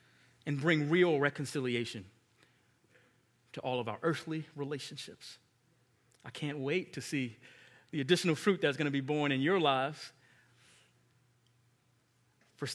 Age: 30-49